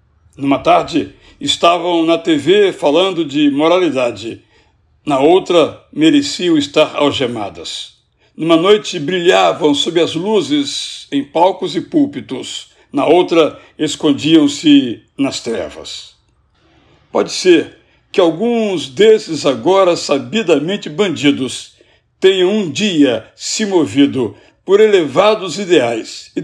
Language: Portuguese